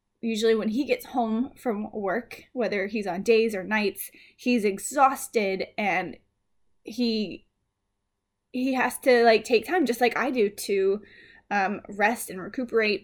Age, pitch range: 10-29, 205-250 Hz